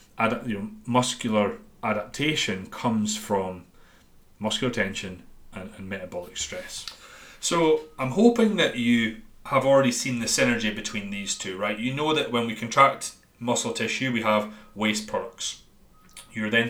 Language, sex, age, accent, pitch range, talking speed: English, male, 30-49, British, 105-120 Hz, 145 wpm